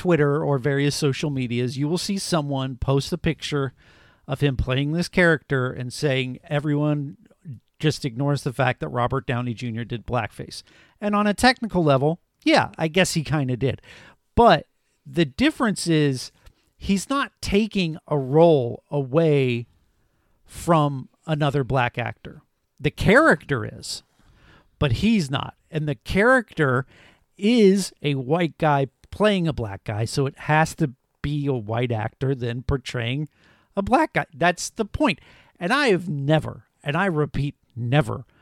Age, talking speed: 50-69, 150 wpm